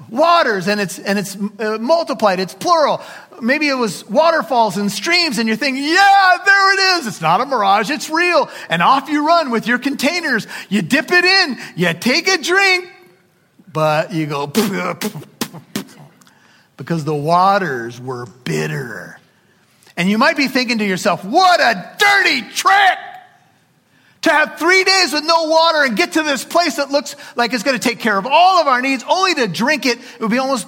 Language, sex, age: English, male, 40-59